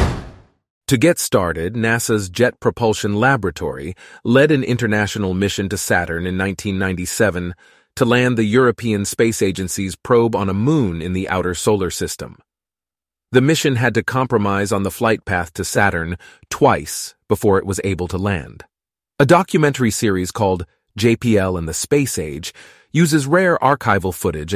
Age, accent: 30-49, American